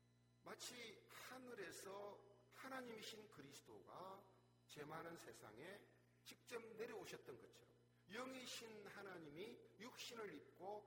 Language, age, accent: Korean, 50-69, native